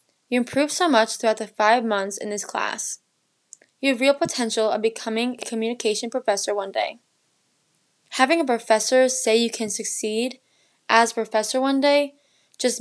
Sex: female